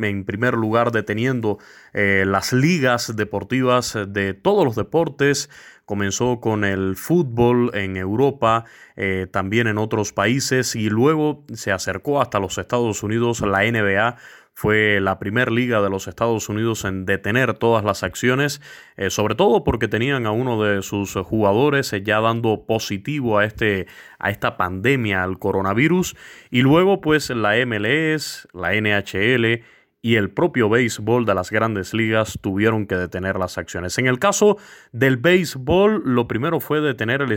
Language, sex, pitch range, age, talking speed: Spanish, male, 100-130 Hz, 20-39, 155 wpm